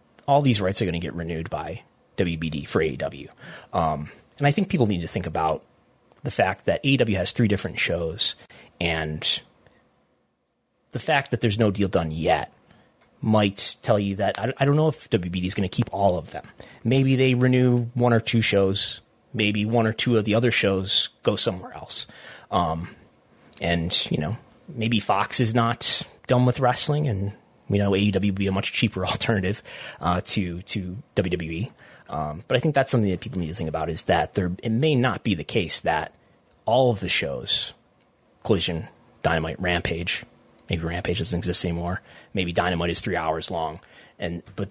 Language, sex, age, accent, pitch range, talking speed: English, male, 30-49, American, 90-120 Hz, 190 wpm